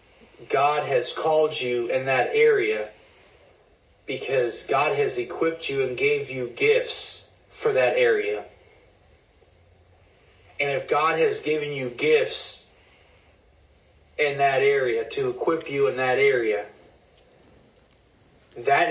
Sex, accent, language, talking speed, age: male, American, English, 115 wpm, 30-49